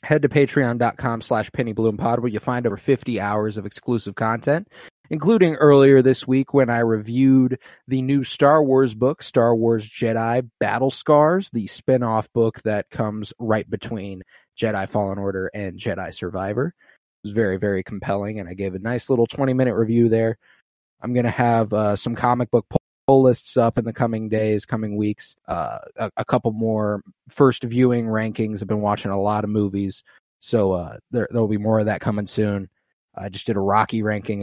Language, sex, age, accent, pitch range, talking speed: English, male, 20-39, American, 105-125 Hz, 185 wpm